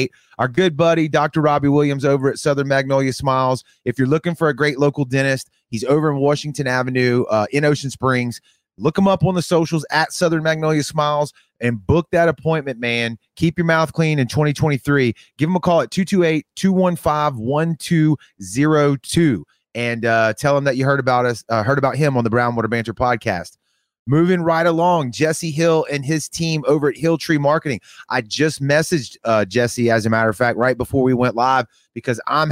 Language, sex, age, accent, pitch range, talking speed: English, male, 30-49, American, 125-155 Hz, 190 wpm